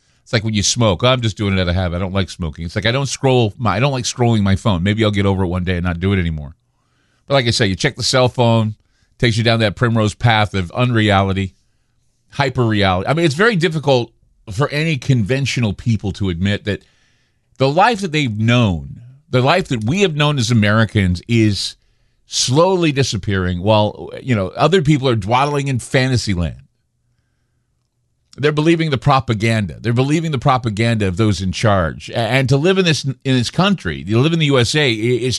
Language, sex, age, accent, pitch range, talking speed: English, male, 40-59, American, 105-145 Hz, 205 wpm